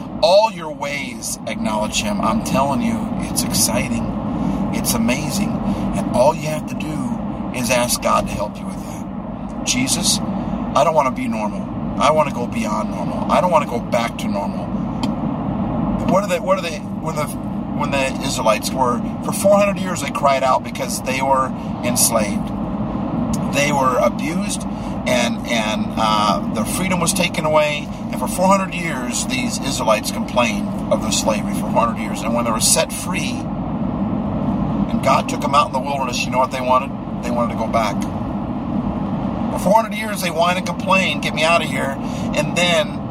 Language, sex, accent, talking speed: English, male, American, 180 wpm